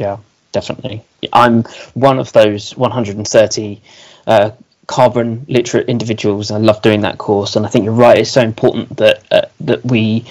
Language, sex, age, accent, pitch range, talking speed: English, male, 20-39, British, 110-130 Hz, 170 wpm